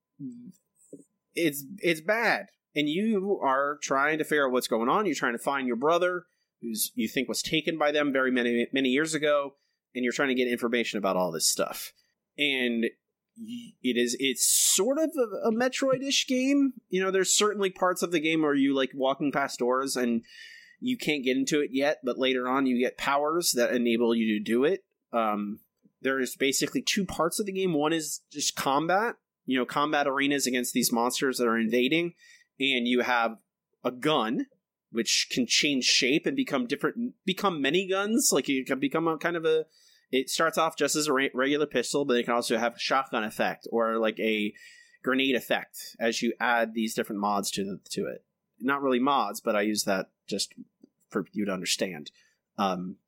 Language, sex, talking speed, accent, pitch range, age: English, male, 195 wpm, American, 125-185 Hz, 30-49